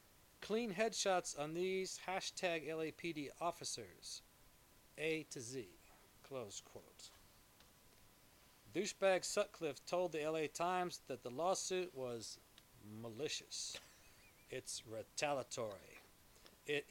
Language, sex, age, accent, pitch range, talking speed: English, male, 40-59, American, 120-165 Hz, 90 wpm